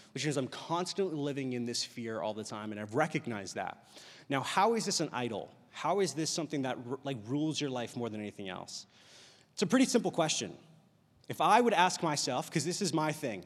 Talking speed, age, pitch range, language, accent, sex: 220 wpm, 30-49, 125-165 Hz, English, American, male